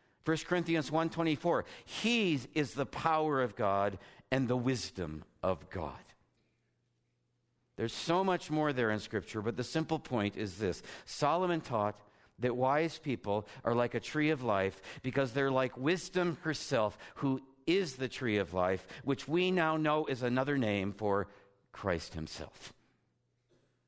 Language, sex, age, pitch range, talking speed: English, male, 50-69, 105-145 Hz, 155 wpm